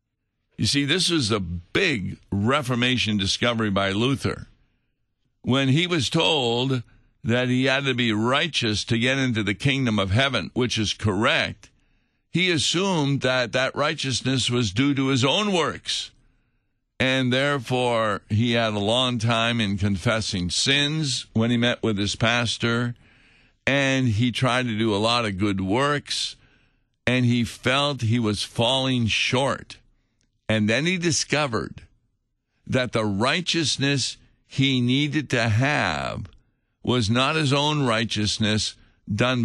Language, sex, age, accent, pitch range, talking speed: English, male, 60-79, American, 110-130 Hz, 140 wpm